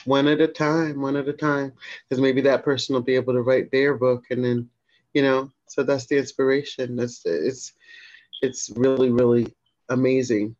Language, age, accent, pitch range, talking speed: English, 30-49, American, 120-145 Hz, 185 wpm